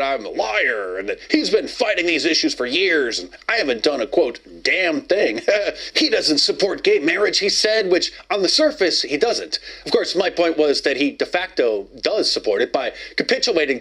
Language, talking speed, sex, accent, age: English, 205 wpm, male, American, 30-49